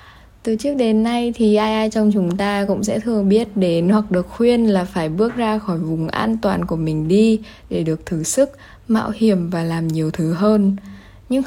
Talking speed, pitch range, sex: 215 wpm, 175-220 Hz, female